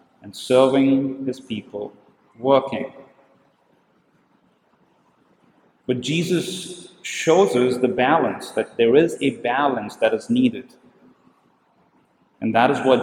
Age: 40-59